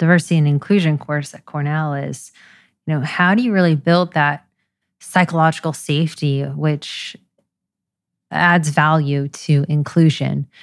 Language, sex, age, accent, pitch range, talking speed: English, female, 20-39, American, 150-180 Hz, 125 wpm